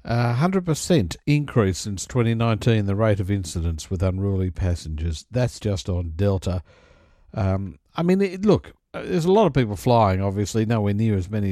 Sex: male